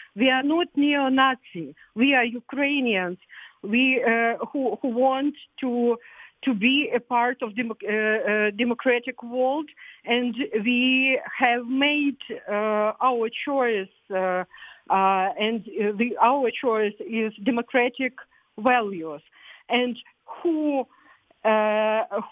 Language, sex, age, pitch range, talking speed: English, female, 50-69, 200-250 Hz, 115 wpm